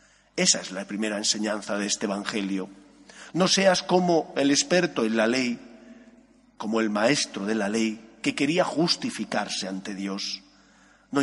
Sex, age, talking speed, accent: male, 40-59, 150 wpm, Spanish